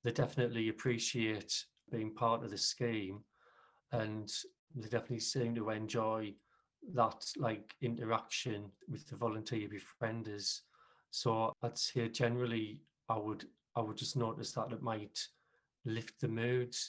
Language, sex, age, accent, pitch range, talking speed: English, male, 40-59, British, 110-120 Hz, 130 wpm